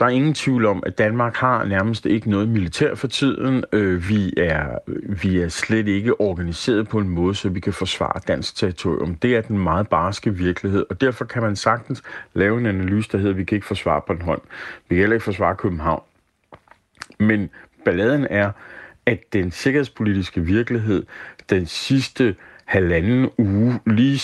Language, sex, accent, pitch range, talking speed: Danish, male, native, 100-130 Hz, 175 wpm